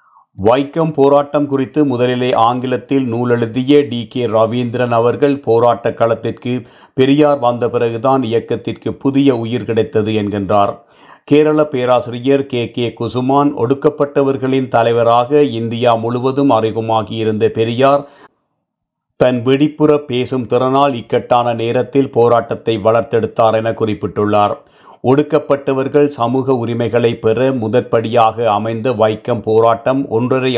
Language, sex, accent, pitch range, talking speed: Tamil, male, native, 110-135 Hz, 95 wpm